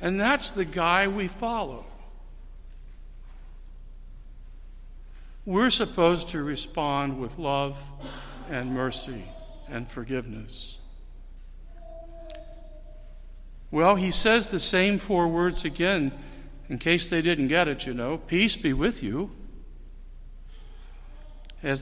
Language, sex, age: English, male, 60-79